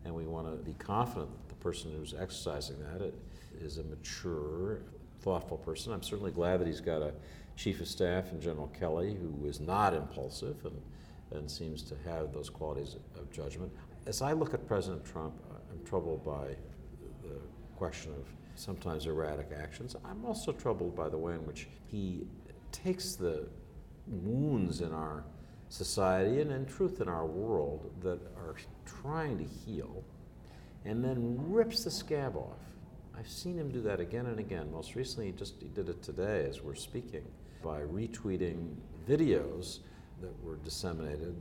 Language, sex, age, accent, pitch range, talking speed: English, male, 60-79, American, 75-100 Hz, 165 wpm